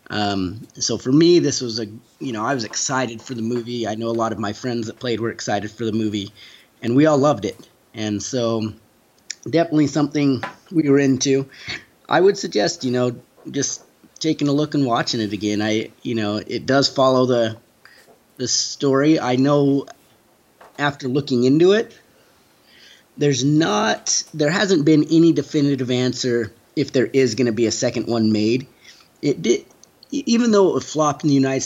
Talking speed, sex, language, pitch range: 180 wpm, male, English, 115-145 Hz